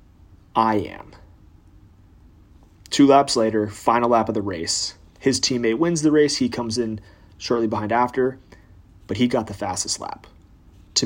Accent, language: American, English